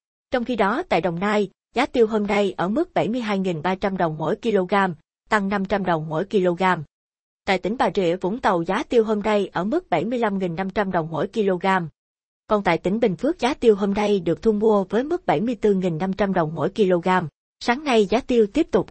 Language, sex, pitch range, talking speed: Vietnamese, female, 180-220 Hz, 195 wpm